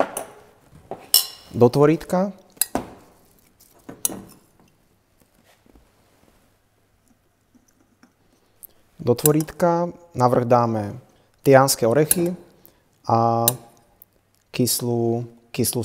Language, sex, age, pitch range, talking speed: Slovak, male, 30-49, 115-130 Hz, 40 wpm